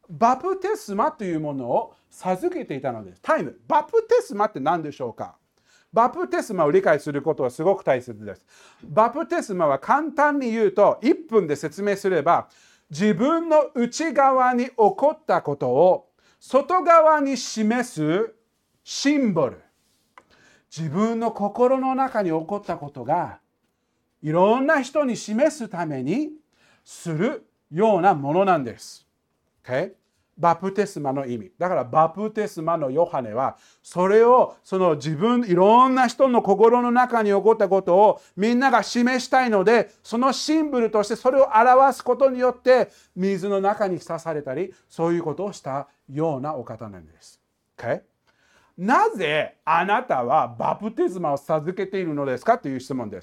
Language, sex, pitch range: Japanese, male, 165-260 Hz